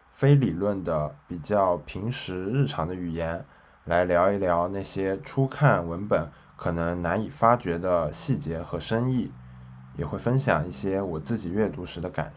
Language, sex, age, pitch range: Chinese, male, 10-29, 75-110 Hz